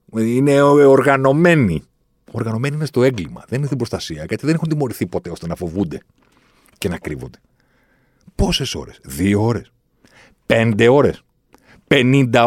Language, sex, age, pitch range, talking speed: Greek, male, 40-59, 90-130 Hz, 135 wpm